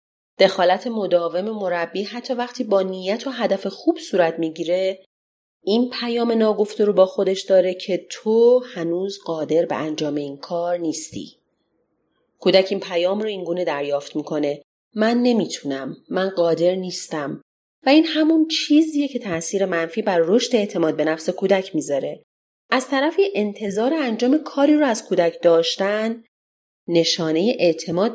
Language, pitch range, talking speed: Persian, 165-230 Hz, 140 wpm